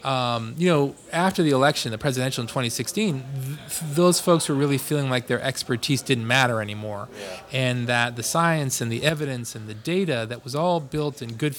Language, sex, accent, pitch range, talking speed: English, male, American, 120-150 Hz, 190 wpm